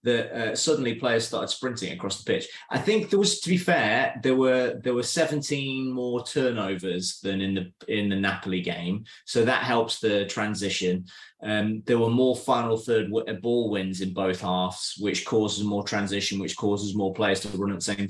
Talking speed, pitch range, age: 200 wpm, 95-115 Hz, 20-39